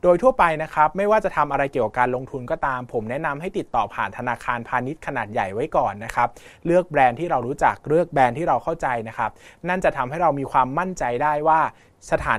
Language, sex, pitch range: Thai, male, 120-160 Hz